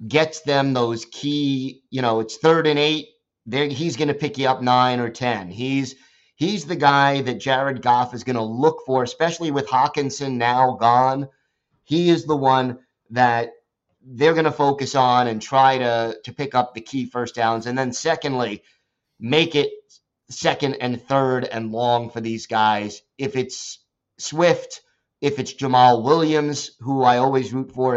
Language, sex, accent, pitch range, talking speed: English, male, American, 120-150 Hz, 175 wpm